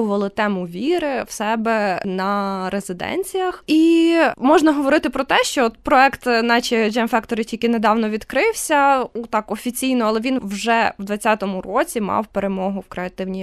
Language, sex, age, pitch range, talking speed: Ukrainian, female, 20-39, 200-235 Hz, 140 wpm